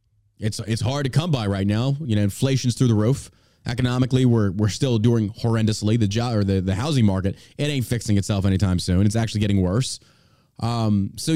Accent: American